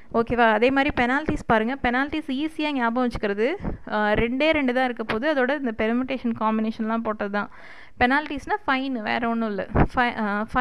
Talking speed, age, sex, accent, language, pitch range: 135 wpm, 20-39, female, native, Tamil, 230-290 Hz